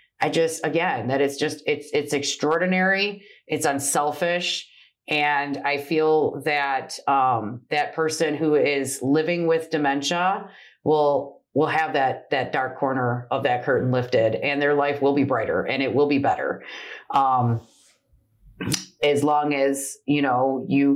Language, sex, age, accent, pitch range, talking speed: English, female, 30-49, American, 125-155 Hz, 150 wpm